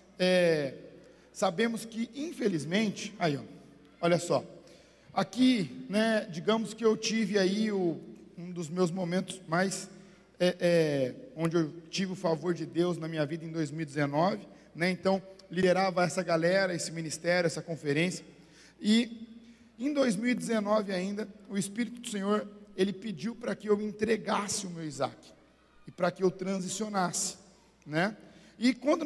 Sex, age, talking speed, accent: male, 50-69, 130 wpm, Brazilian